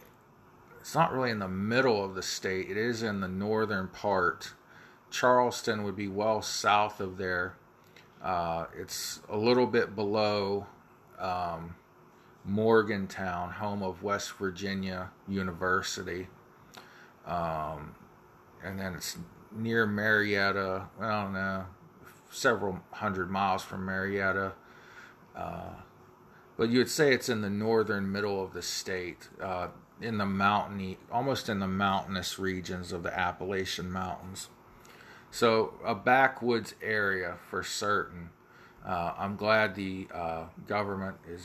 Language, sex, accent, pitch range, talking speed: English, male, American, 95-110 Hz, 125 wpm